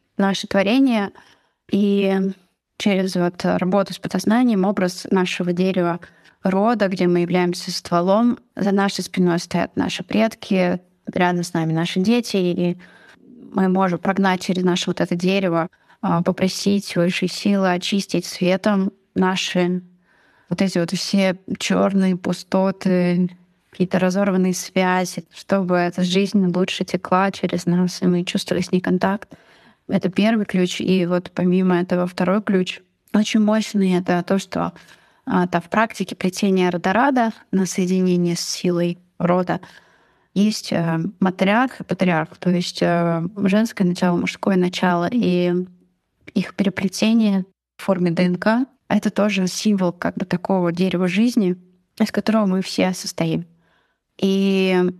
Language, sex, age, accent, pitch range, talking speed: Russian, female, 20-39, native, 180-200 Hz, 130 wpm